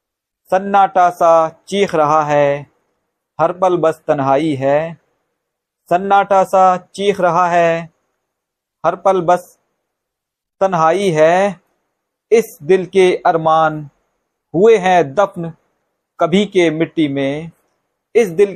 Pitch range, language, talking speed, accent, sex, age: 165-195 Hz, Hindi, 105 wpm, native, male, 50-69